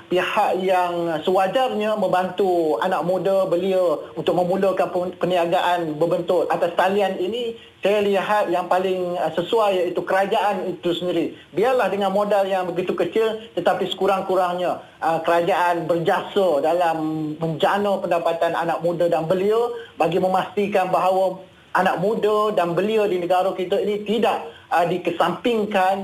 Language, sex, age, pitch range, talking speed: Malay, male, 20-39, 175-200 Hz, 120 wpm